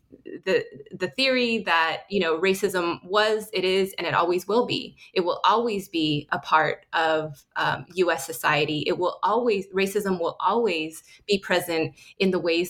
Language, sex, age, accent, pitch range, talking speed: English, female, 20-39, American, 165-205 Hz, 170 wpm